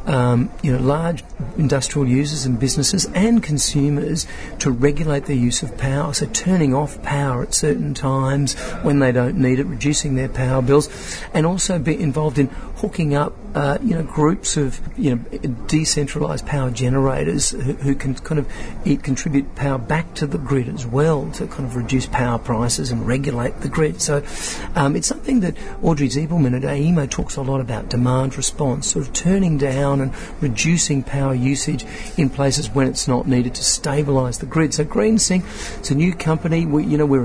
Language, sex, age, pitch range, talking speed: English, male, 50-69, 130-155 Hz, 185 wpm